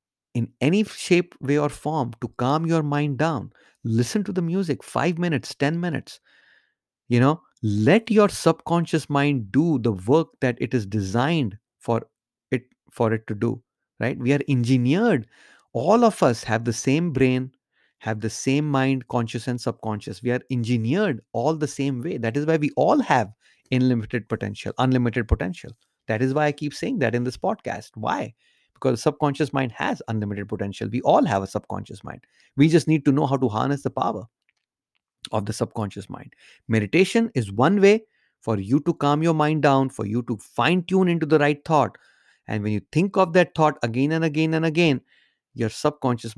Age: 30-49